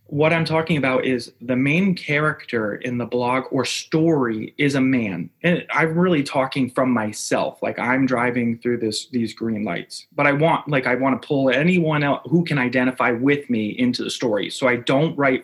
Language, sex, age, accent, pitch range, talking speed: English, male, 30-49, American, 120-150 Hz, 200 wpm